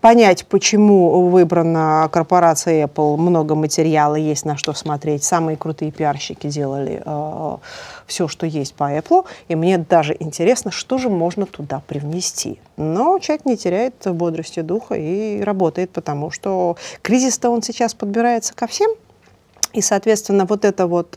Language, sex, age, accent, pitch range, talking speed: Russian, female, 30-49, native, 160-215 Hz, 145 wpm